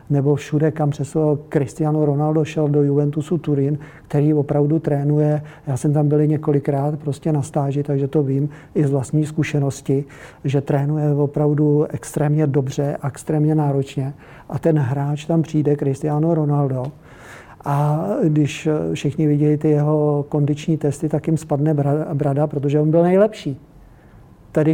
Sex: male